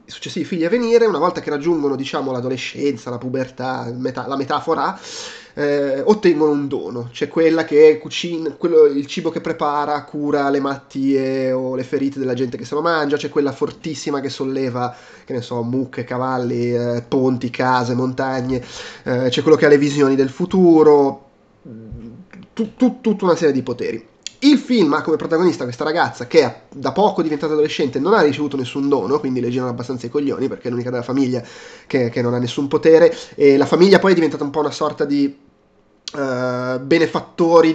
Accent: native